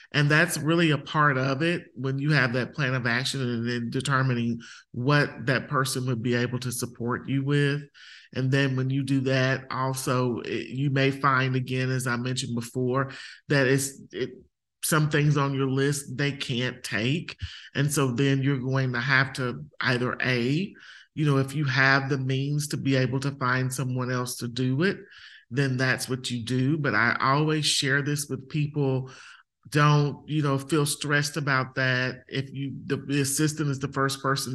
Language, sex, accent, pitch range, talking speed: English, male, American, 125-145 Hz, 190 wpm